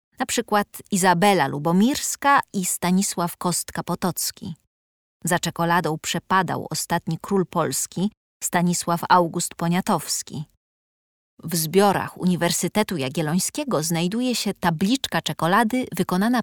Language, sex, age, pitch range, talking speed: Polish, female, 20-39, 170-205 Hz, 90 wpm